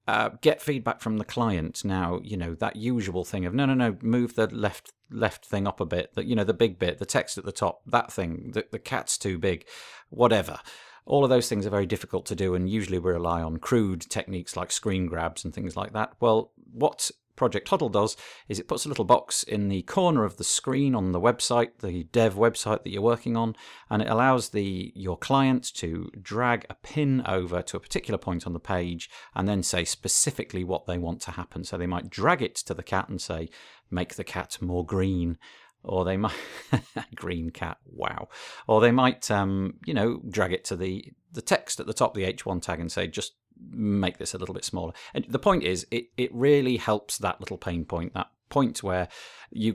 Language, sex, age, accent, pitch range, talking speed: English, male, 40-59, British, 90-115 Hz, 220 wpm